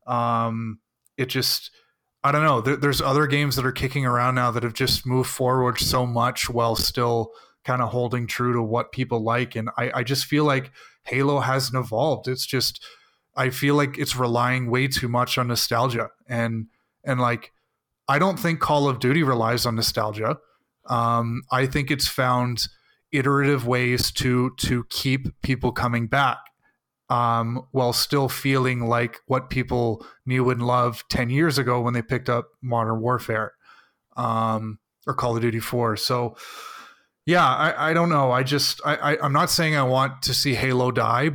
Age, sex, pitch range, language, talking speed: 20-39, male, 120-130 Hz, English, 175 wpm